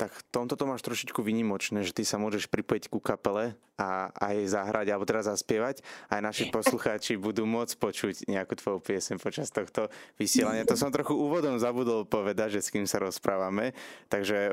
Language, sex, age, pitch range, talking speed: Slovak, male, 20-39, 95-115 Hz, 180 wpm